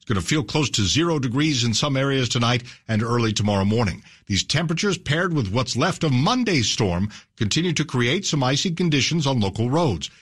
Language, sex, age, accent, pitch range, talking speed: English, male, 60-79, American, 105-150 Hz, 195 wpm